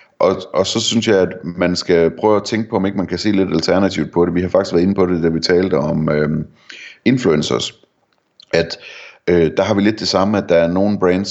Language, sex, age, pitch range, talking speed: Danish, male, 30-49, 85-95 Hz, 250 wpm